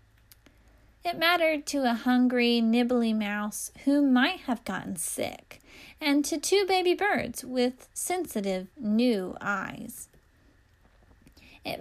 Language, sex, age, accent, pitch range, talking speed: English, female, 10-29, American, 205-295 Hz, 110 wpm